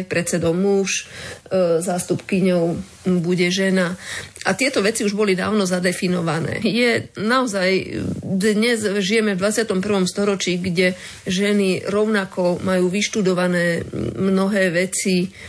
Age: 30-49